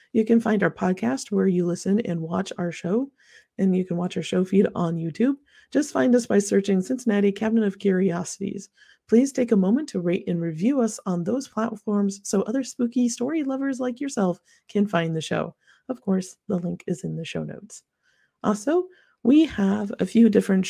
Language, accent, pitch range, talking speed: English, American, 180-240 Hz, 195 wpm